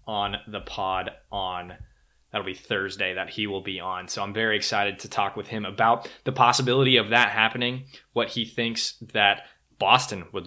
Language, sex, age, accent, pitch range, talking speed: English, male, 20-39, American, 100-120 Hz, 185 wpm